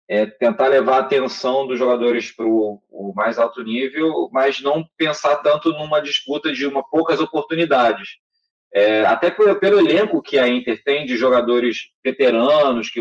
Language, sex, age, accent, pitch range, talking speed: Portuguese, male, 20-39, Brazilian, 125-175 Hz, 160 wpm